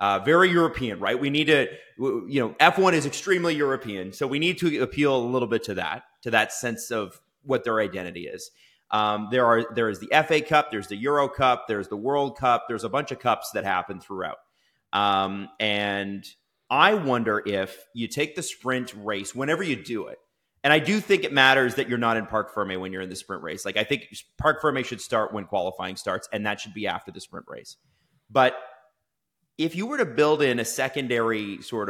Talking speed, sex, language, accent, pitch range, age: 215 wpm, male, English, American, 110-150 Hz, 30-49